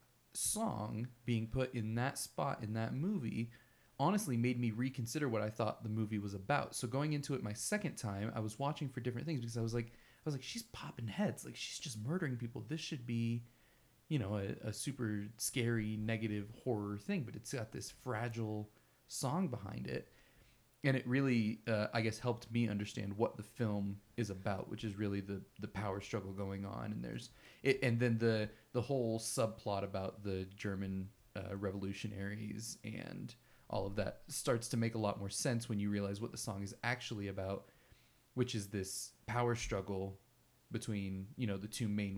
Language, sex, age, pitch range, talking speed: English, male, 30-49, 105-125 Hz, 195 wpm